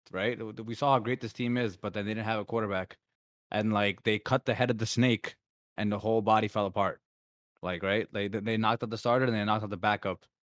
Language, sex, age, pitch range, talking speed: English, male, 20-39, 100-120 Hz, 245 wpm